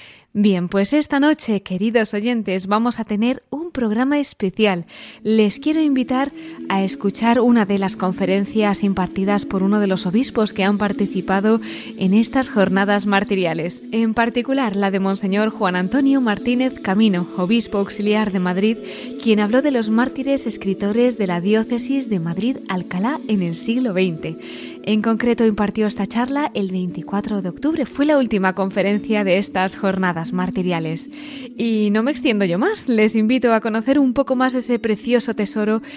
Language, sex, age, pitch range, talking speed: Spanish, female, 20-39, 195-245 Hz, 160 wpm